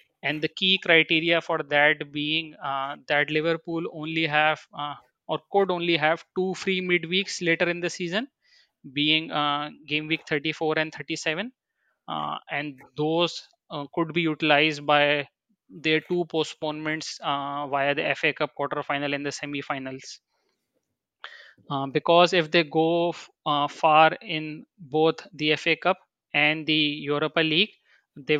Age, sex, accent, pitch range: 20-39, male, Indian, 150-170 Hz